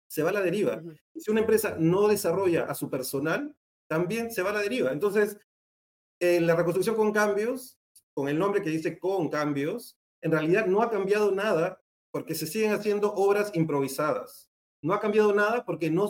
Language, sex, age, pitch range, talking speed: Spanish, male, 30-49, 155-205 Hz, 185 wpm